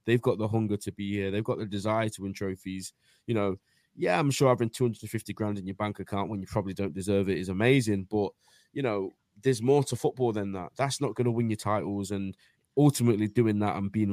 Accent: British